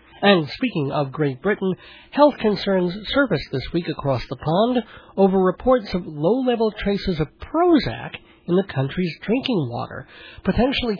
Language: English